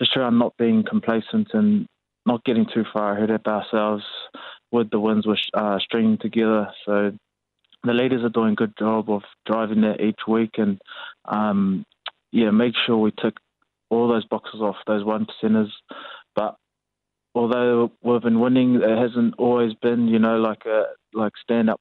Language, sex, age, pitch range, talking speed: English, male, 20-39, 105-115 Hz, 170 wpm